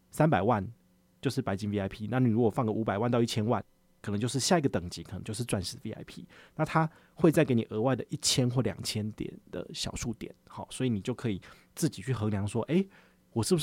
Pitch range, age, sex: 105-135 Hz, 30-49, male